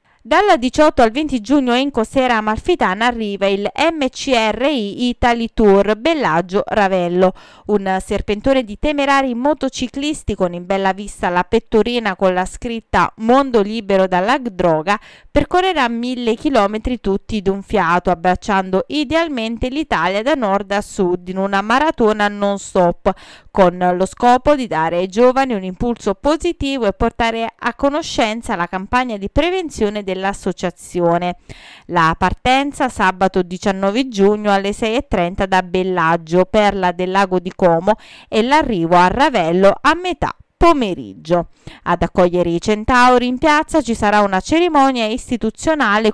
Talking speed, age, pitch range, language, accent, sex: 135 wpm, 20-39, 190-260 Hz, Italian, native, female